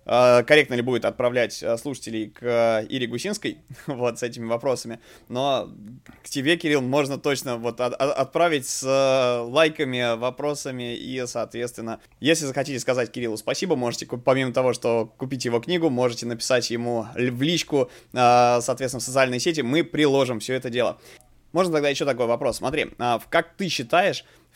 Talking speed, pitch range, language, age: 145 wpm, 120-150 Hz, Russian, 20-39